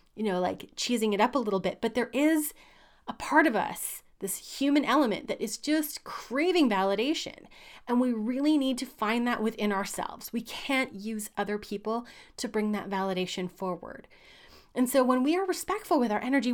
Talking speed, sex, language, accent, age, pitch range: 190 wpm, female, English, American, 30-49, 195-265 Hz